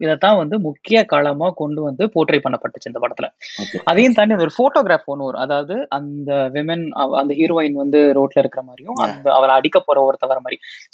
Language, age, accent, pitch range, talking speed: Tamil, 20-39, native, 145-215 Hz, 55 wpm